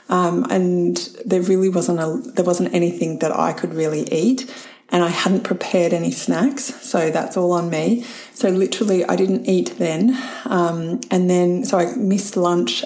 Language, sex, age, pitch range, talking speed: English, female, 30-49, 175-225 Hz, 175 wpm